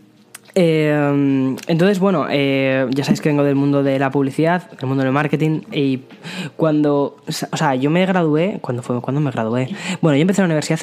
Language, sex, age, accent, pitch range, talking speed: Spanish, female, 10-29, Spanish, 125-150 Hz, 190 wpm